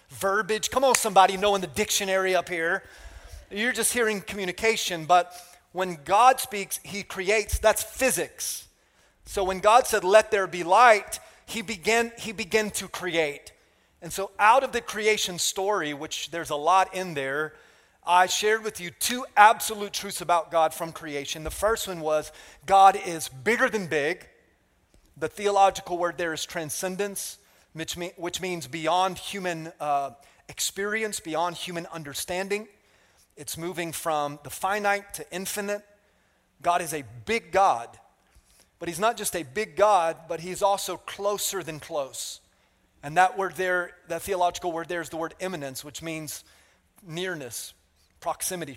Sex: male